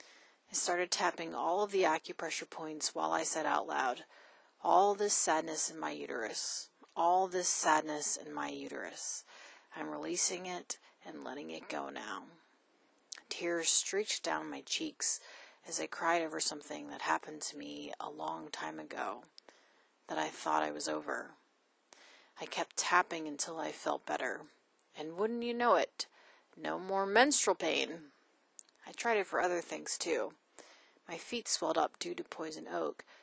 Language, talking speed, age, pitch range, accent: English, 160 wpm, 30-49, 155-200 Hz, American